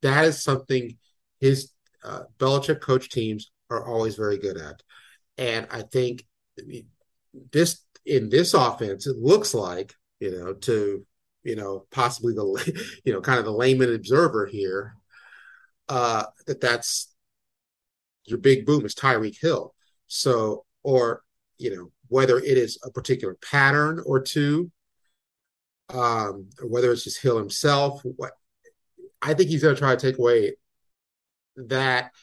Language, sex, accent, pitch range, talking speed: English, male, American, 120-155 Hz, 140 wpm